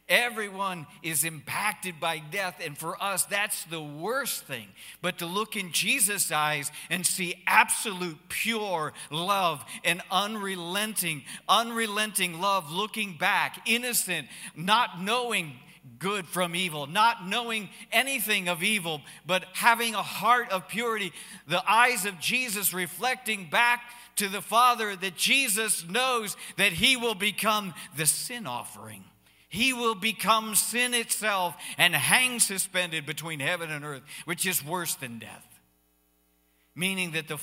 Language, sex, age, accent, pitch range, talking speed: English, male, 50-69, American, 160-225 Hz, 135 wpm